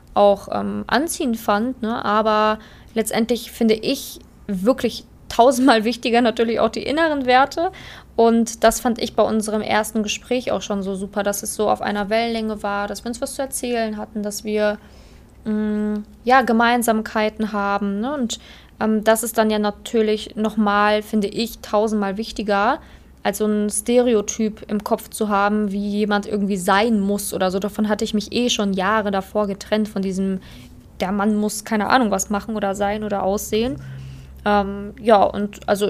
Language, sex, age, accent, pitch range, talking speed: German, female, 20-39, German, 205-225 Hz, 165 wpm